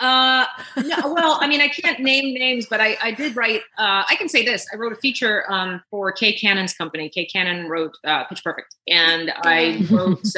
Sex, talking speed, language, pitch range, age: female, 215 wpm, English, 165-215 Hz, 30-49